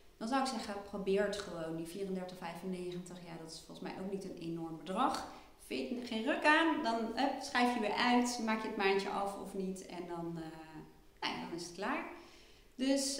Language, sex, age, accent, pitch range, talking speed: Dutch, female, 30-49, Dutch, 180-240 Hz, 220 wpm